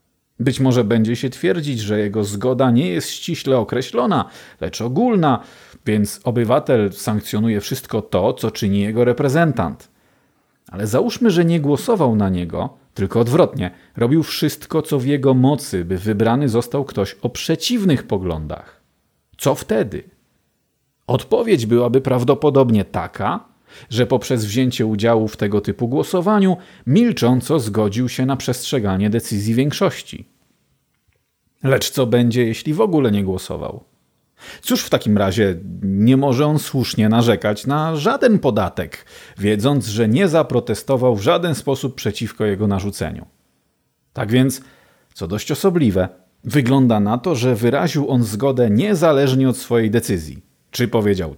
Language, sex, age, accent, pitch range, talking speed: Polish, male, 40-59, native, 105-140 Hz, 135 wpm